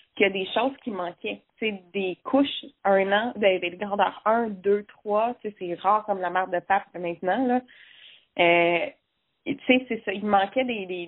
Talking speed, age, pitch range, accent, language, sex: 210 wpm, 20-39, 185-235 Hz, Canadian, French, female